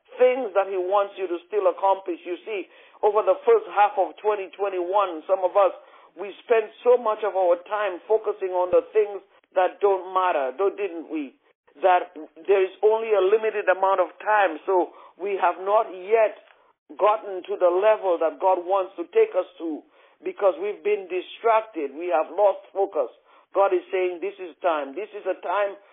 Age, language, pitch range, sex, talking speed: 50-69, English, 160-210 Hz, male, 195 wpm